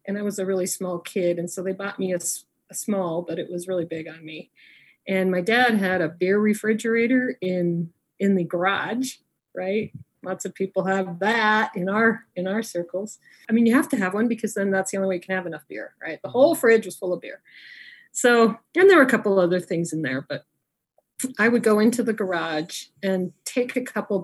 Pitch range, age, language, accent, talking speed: 175-225 Hz, 40-59, English, American, 225 wpm